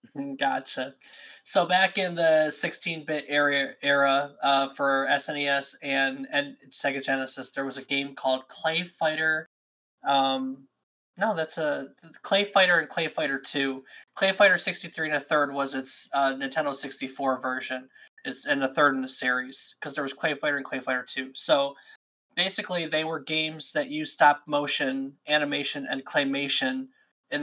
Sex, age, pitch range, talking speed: male, 20-39, 135-155 Hz, 170 wpm